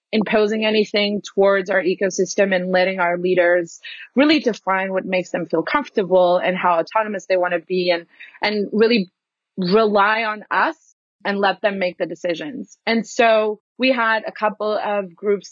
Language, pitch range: English, 185-225 Hz